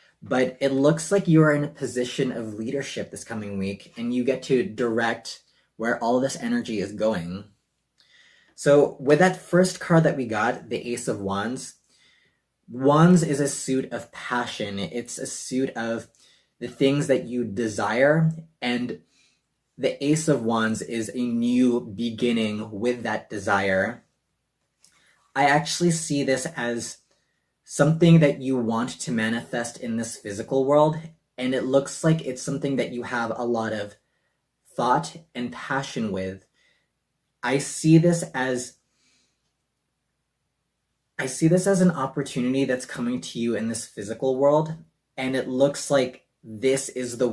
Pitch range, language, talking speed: 115-145 Hz, English, 150 wpm